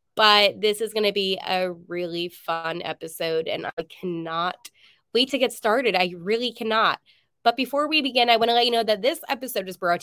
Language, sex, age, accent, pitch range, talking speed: English, female, 20-39, American, 180-255 Hz, 210 wpm